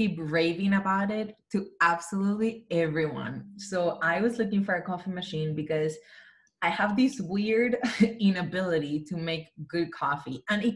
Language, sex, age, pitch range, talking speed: English, female, 20-39, 165-220 Hz, 145 wpm